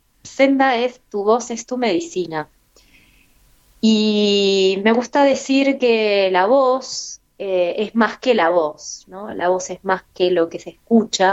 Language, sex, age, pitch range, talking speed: Spanish, female, 20-39, 185-230 Hz, 160 wpm